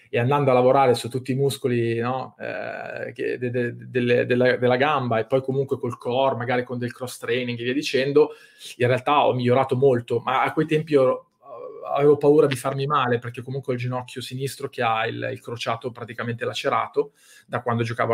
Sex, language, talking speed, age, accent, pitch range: male, Italian, 205 wpm, 20-39, native, 125-155 Hz